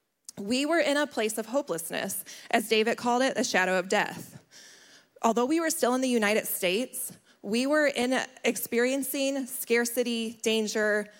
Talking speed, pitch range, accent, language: 155 wpm, 200-245 Hz, American, English